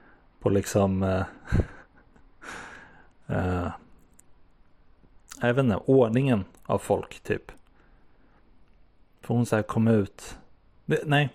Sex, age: male, 30-49